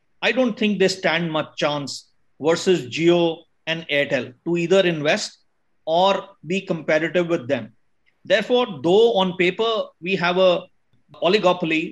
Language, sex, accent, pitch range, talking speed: English, male, Indian, 170-205 Hz, 135 wpm